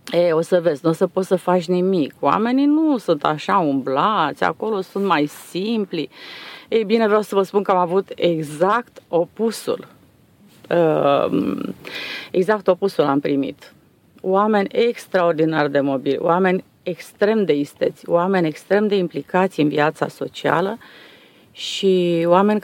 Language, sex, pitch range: Romanian, female, 160-210 Hz